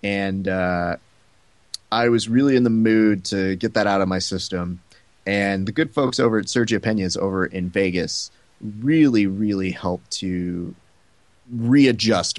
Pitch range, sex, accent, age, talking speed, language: 95-115 Hz, male, American, 30-49, 150 wpm, English